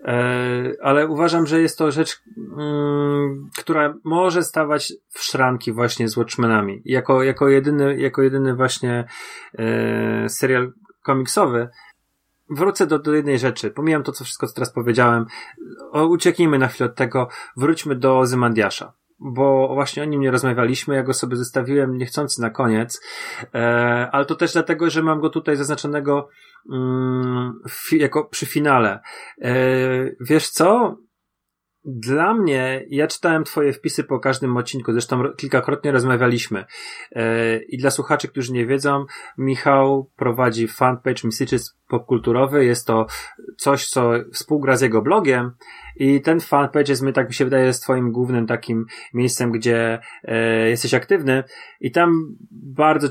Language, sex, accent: Polish, male, native